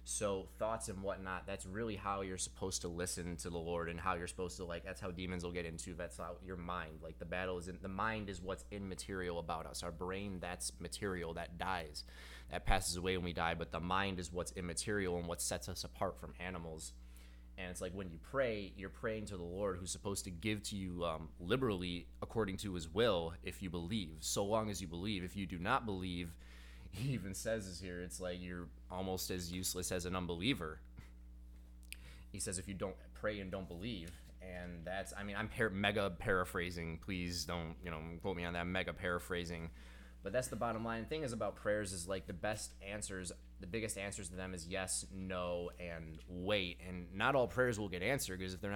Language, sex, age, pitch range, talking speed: English, male, 20-39, 85-100 Hz, 220 wpm